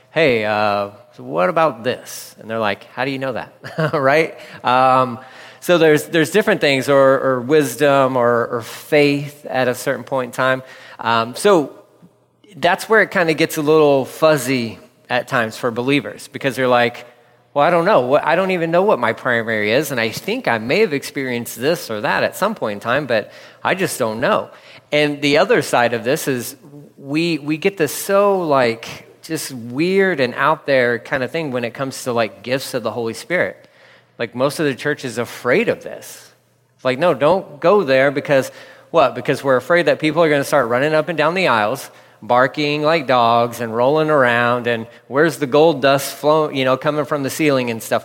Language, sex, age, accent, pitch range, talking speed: English, male, 30-49, American, 125-155 Hz, 205 wpm